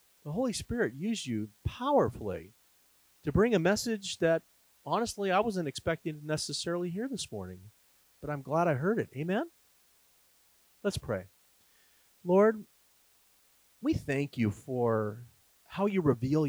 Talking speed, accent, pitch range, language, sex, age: 135 wpm, American, 115-190 Hz, English, male, 40-59